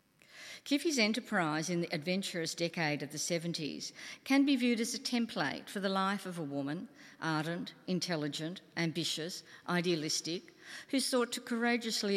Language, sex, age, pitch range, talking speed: English, female, 50-69, 155-200 Hz, 145 wpm